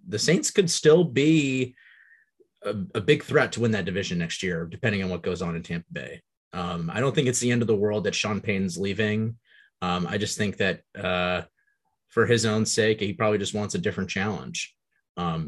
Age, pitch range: 30-49, 95-115 Hz